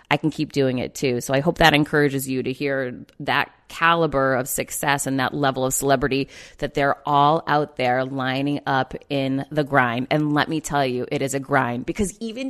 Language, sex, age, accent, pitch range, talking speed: English, female, 30-49, American, 140-195 Hz, 210 wpm